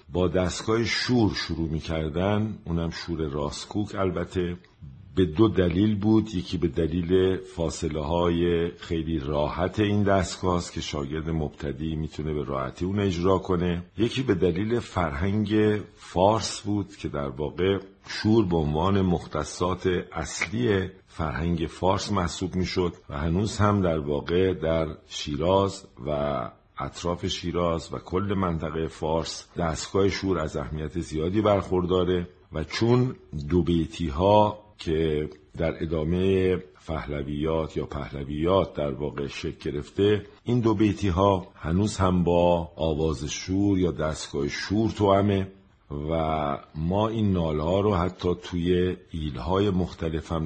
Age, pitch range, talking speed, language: 50-69, 80-95 Hz, 135 wpm, Persian